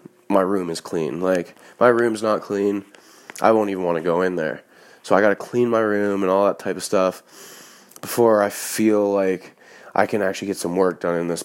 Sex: male